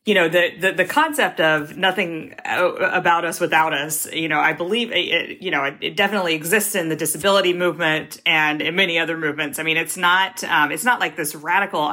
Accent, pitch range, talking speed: American, 150-175 Hz, 210 wpm